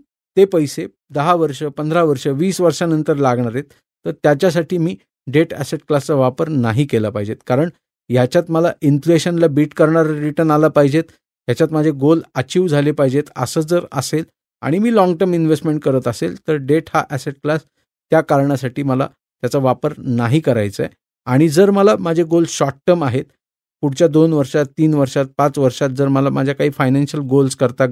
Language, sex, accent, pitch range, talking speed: Marathi, male, native, 140-175 Hz, 140 wpm